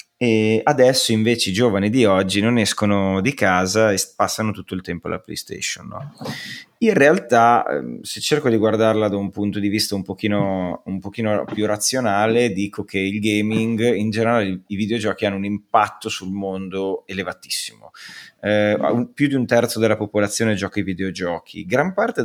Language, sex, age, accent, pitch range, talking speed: Italian, male, 30-49, native, 100-120 Hz, 160 wpm